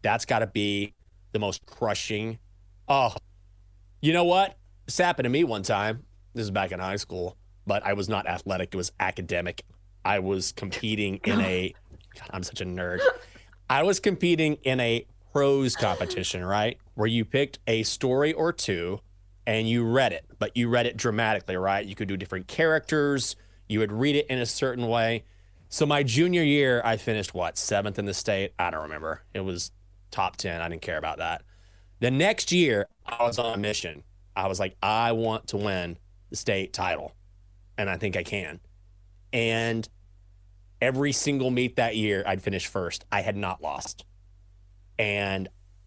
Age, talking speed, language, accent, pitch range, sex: 30-49, 180 wpm, English, American, 95-120 Hz, male